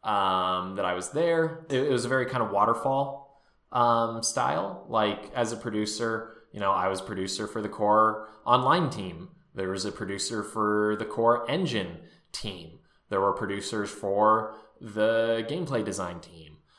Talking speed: 165 wpm